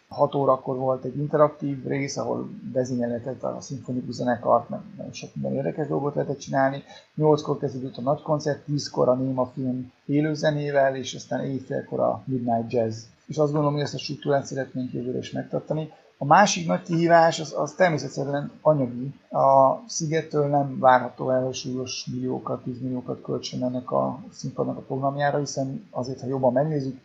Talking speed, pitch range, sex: 160 wpm, 130-145 Hz, male